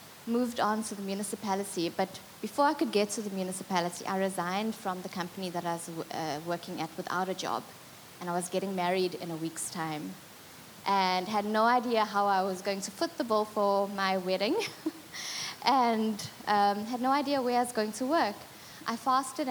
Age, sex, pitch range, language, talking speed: 20-39, female, 185-215 Hz, English, 195 wpm